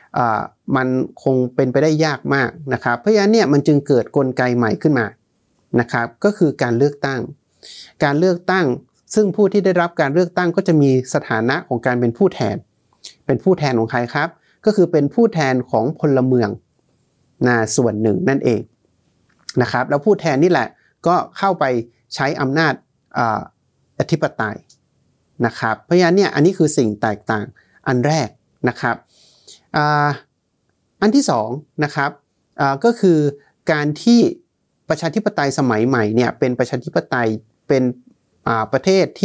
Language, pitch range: Thai, 125-160 Hz